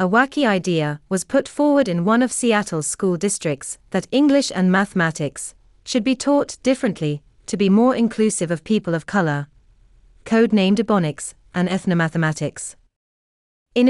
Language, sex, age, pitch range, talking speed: English, female, 30-49, 160-230 Hz, 145 wpm